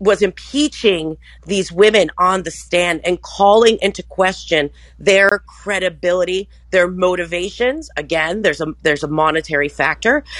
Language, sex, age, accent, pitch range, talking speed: English, female, 40-59, American, 165-215 Hz, 125 wpm